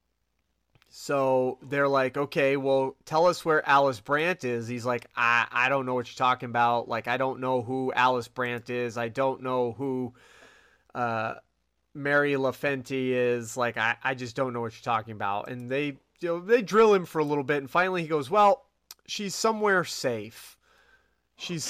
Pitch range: 120-145 Hz